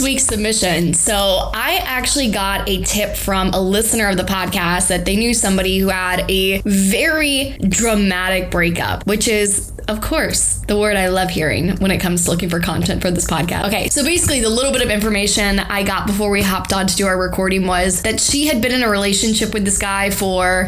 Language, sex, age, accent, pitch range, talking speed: English, female, 10-29, American, 185-220 Hz, 210 wpm